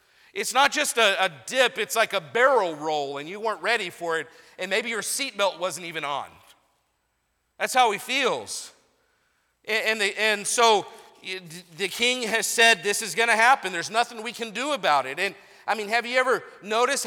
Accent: American